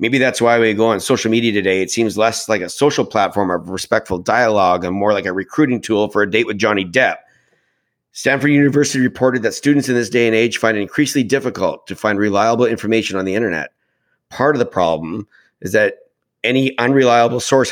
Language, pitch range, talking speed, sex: English, 110-135 Hz, 205 wpm, male